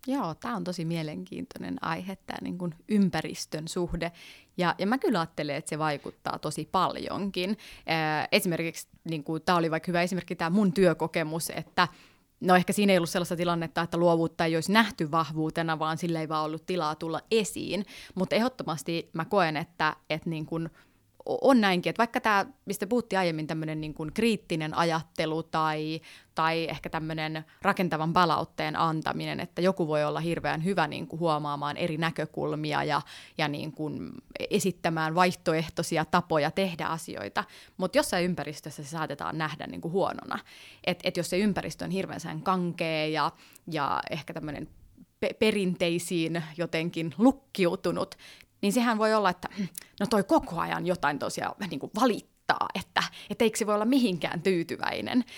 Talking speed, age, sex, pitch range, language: 155 wpm, 20-39, female, 160-190 Hz, Finnish